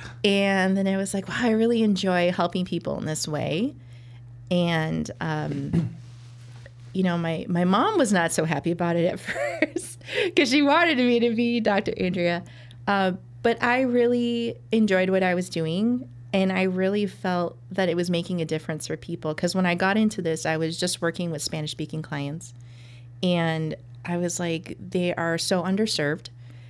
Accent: American